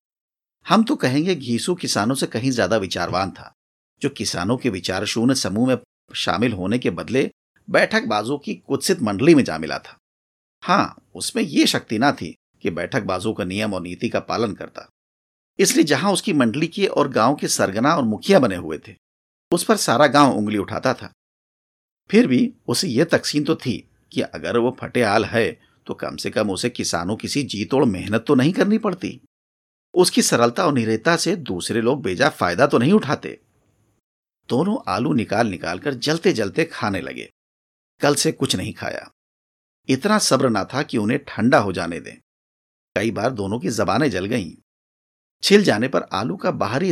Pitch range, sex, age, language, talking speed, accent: 95-145 Hz, male, 50-69, Hindi, 180 wpm, native